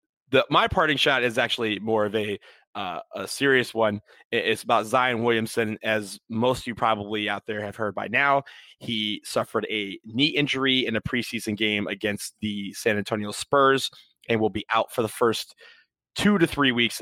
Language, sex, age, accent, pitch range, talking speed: English, male, 20-39, American, 105-125 Hz, 185 wpm